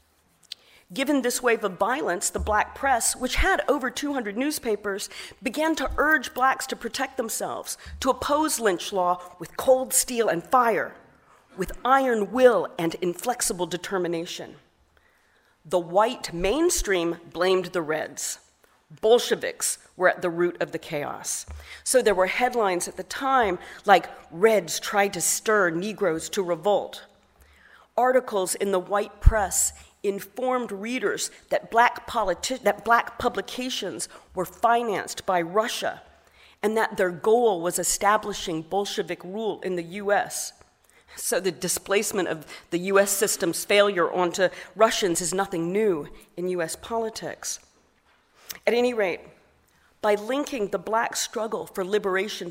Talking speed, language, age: 135 wpm, German, 40-59